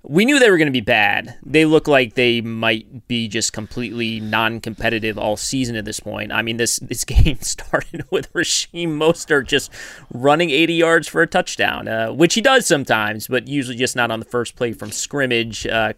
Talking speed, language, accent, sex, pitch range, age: 205 wpm, English, American, male, 115-150 Hz, 30-49